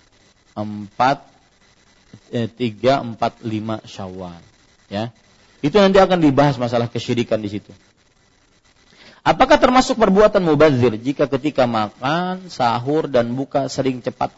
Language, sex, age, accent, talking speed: English, male, 40-59, Indonesian, 110 wpm